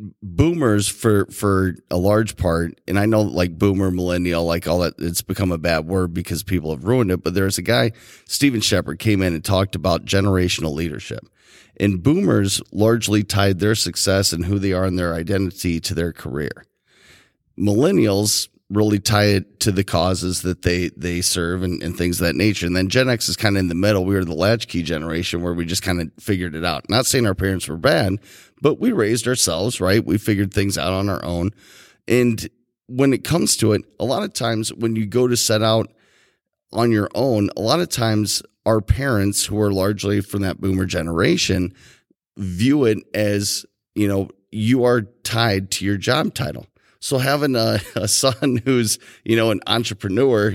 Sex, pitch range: male, 90-110 Hz